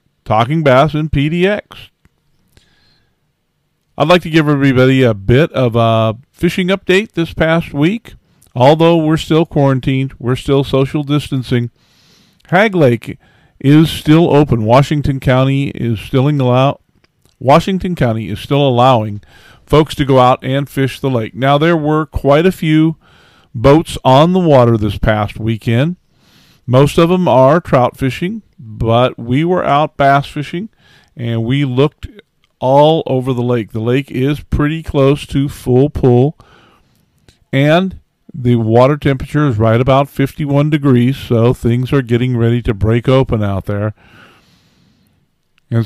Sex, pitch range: male, 125-155 Hz